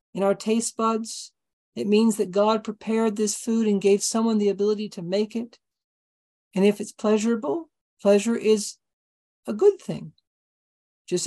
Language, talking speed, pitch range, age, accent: English, 155 wpm, 180-225 Hz, 50-69, American